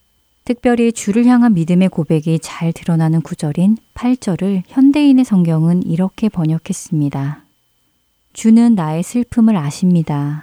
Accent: native